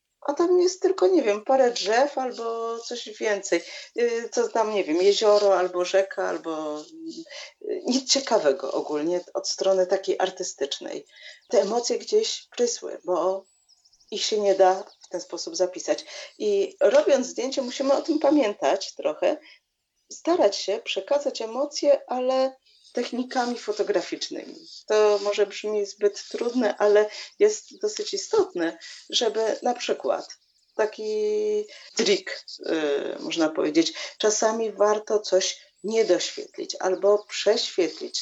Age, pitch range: 40-59, 195-290 Hz